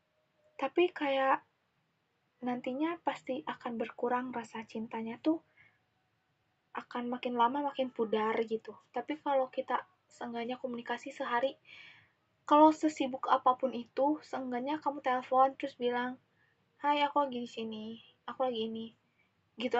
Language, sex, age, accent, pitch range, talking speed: Indonesian, female, 20-39, native, 225-275 Hz, 115 wpm